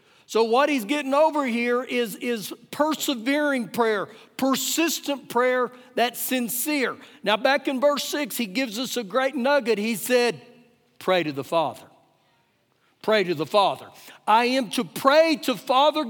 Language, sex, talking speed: English, male, 155 wpm